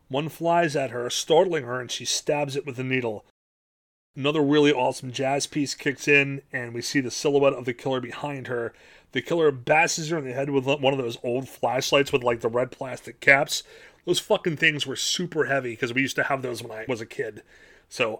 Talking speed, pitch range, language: 220 wpm, 130-160 Hz, English